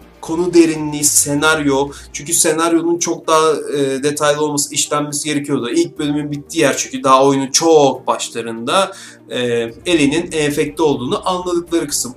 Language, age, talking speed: Turkish, 30-49, 135 wpm